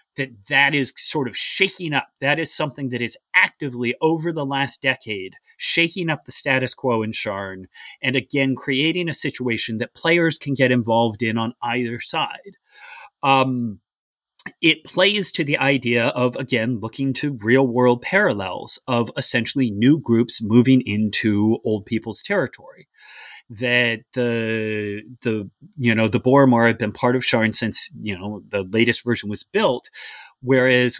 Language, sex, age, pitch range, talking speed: English, male, 30-49, 115-140 Hz, 155 wpm